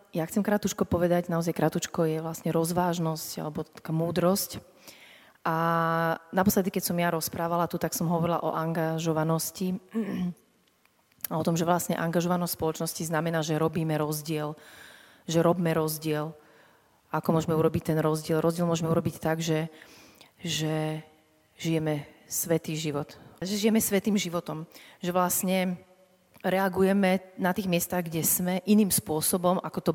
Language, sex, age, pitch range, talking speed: Slovak, female, 30-49, 160-180 Hz, 135 wpm